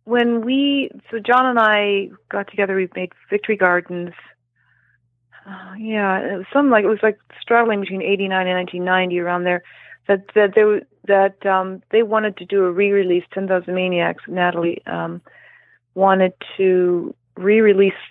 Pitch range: 170-205 Hz